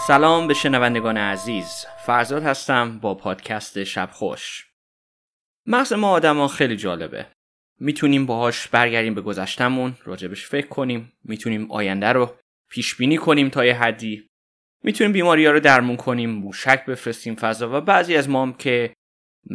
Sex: male